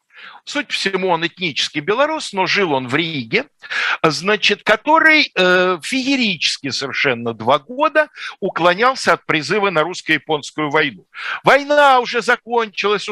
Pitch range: 160-250 Hz